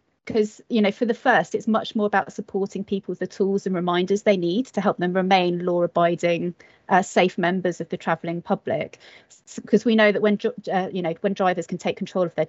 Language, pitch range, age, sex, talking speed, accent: English, 175-205 Hz, 30-49, female, 225 wpm, British